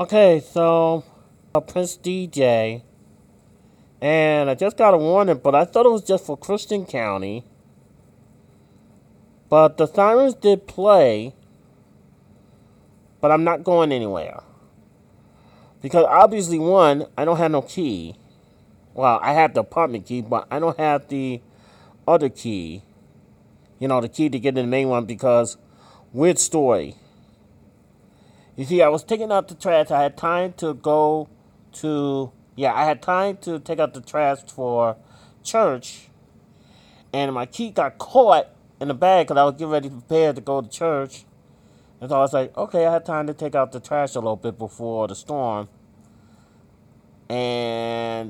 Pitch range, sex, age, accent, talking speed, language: 115-170 Hz, male, 30-49, American, 160 wpm, English